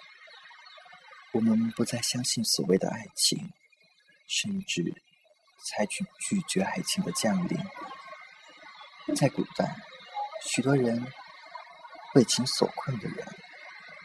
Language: Chinese